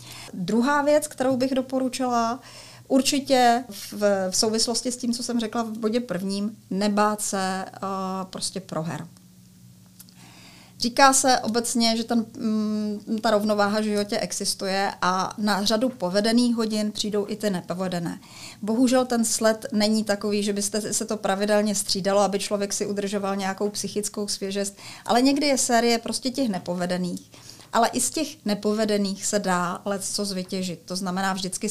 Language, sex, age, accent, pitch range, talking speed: Czech, female, 30-49, native, 195-225 Hz, 150 wpm